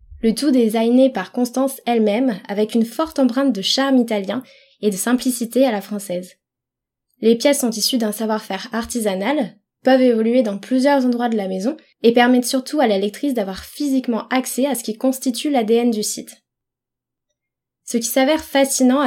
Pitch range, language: 215-265 Hz, French